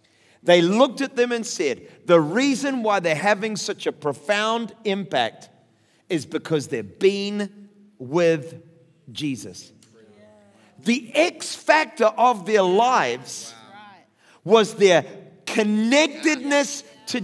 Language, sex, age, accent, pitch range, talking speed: English, male, 50-69, American, 195-265 Hz, 110 wpm